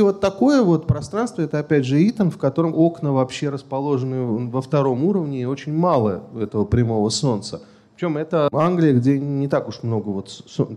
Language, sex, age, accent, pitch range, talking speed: Russian, male, 30-49, native, 135-195 Hz, 175 wpm